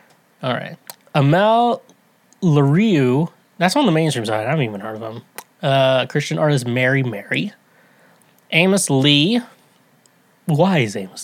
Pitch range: 130-205 Hz